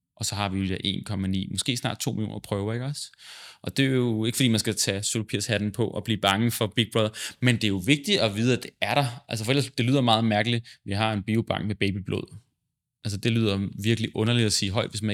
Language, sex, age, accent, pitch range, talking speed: Danish, male, 20-39, native, 100-125 Hz, 255 wpm